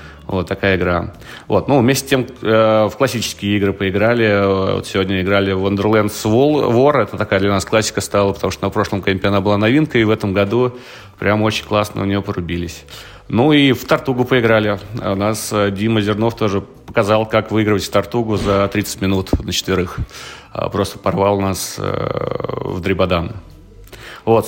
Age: 30-49